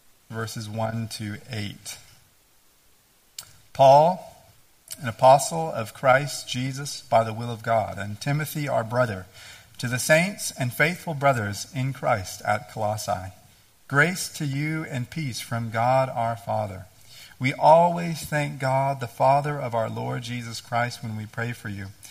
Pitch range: 110-140 Hz